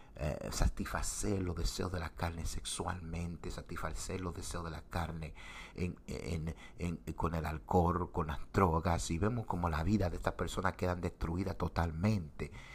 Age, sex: 60-79, male